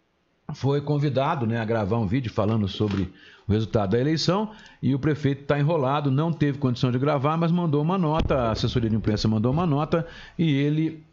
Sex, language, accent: male, Portuguese, Brazilian